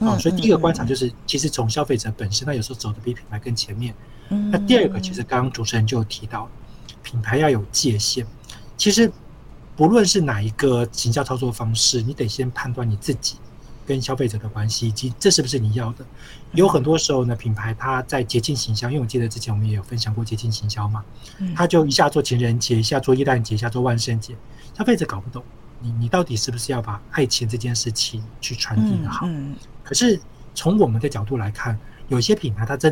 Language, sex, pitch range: Chinese, male, 115-140 Hz